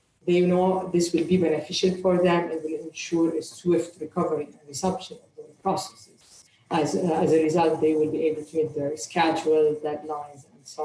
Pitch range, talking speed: 165-200 Hz, 190 wpm